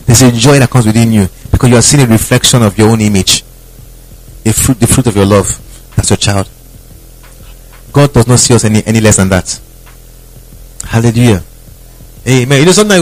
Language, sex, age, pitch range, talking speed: English, male, 30-49, 115-150 Hz, 195 wpm